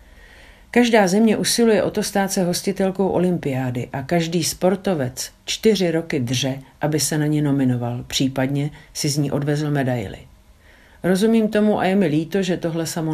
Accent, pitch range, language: native, 130-175 Hz, Czech